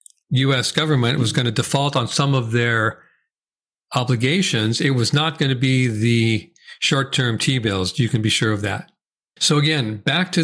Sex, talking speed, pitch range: male, 180 wpm, 125-150 Hz